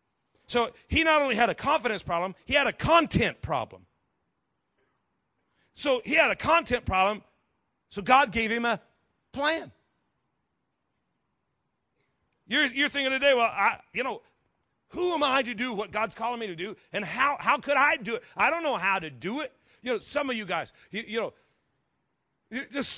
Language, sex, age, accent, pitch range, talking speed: English, male, 40-59, American, 210-290 Hz, 175 wpm